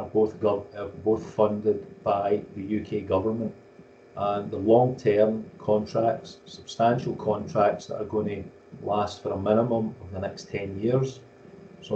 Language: Swedish